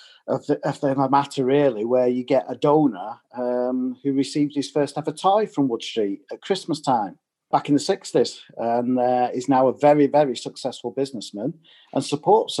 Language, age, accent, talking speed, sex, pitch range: English, 40-59, British, 180 wpm, male, 125-150 Hz